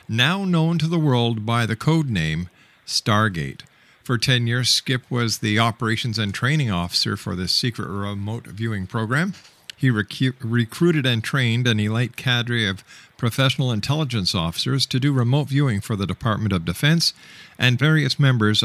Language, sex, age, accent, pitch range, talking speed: English, male, 50-69, American, 105-135 Hz, 160 wpm